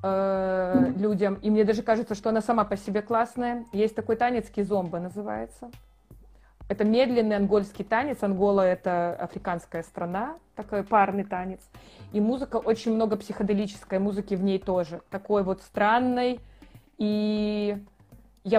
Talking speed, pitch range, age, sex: 130 wpm, 180-215 Hz, 20-39, female